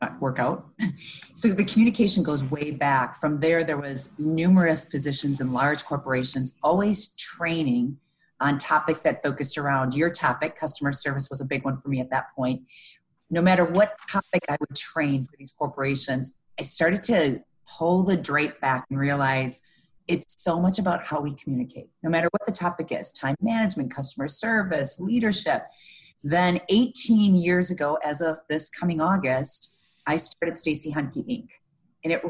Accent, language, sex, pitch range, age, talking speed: American, English, female, 140-180 Hz, 40-59, 165 wpm